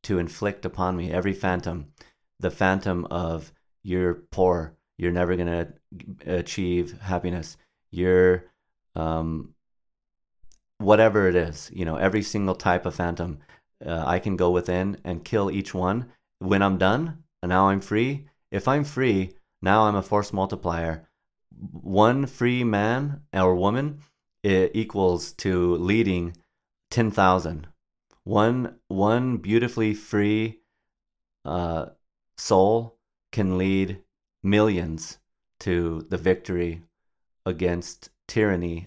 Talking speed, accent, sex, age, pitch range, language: 115 wpm, American, male, 30-49, 85-105 Hz, English